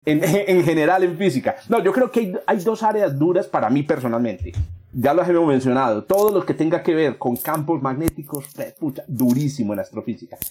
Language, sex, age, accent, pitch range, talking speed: Spanish, male, 40-59, Colombian, 135-200 Hz, 200 wpm